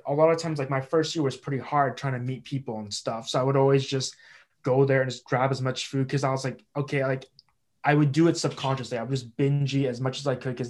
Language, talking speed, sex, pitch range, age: English, 280 wpm, male, 125-145 Hz, 20-39